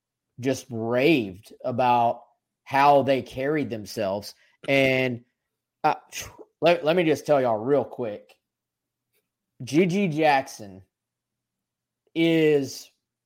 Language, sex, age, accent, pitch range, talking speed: English, male, 20-39, American, 120-140 Hz, 90 wpm